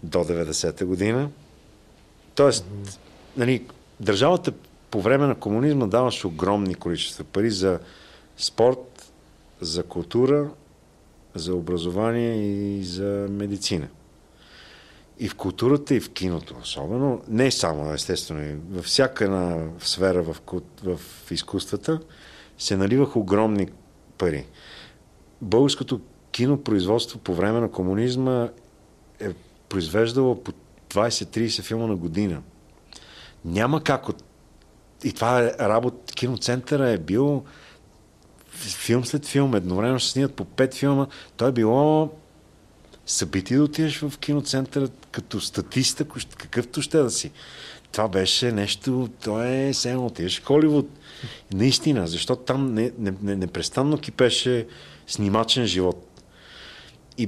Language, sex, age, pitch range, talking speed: Bulgarian, male, 50-69, 95-130 Hz, 110 wpm